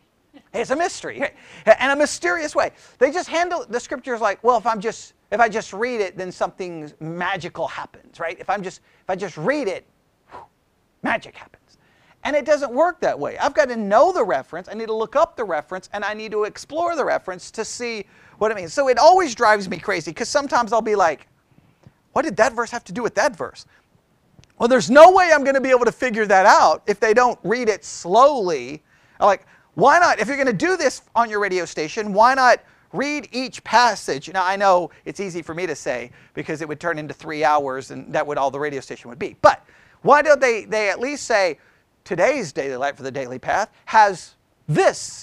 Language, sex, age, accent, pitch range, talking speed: English, male, 40-59, American, 185-260 Hz, 225 wpm